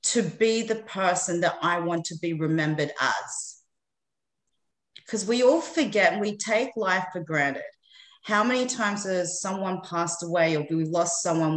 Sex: female